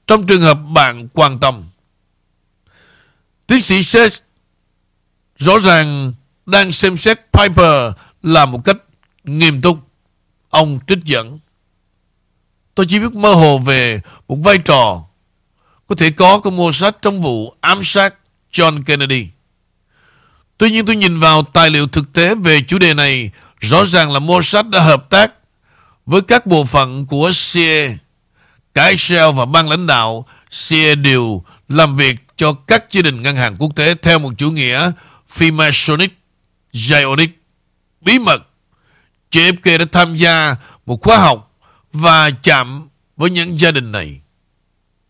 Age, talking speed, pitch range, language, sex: 60-79, 150 wpm, 125-175 Hz, Vietnamese, male